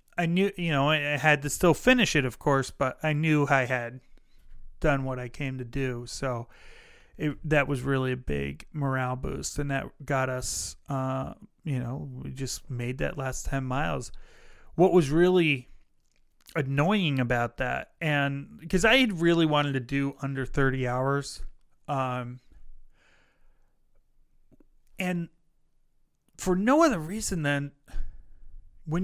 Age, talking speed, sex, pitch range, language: 30-49, 145 wpm, male, 130-170 Hz, English